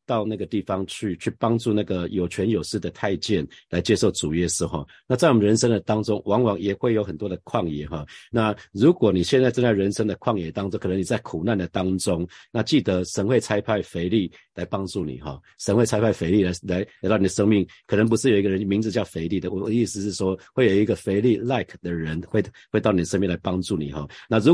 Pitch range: 90-115 Hz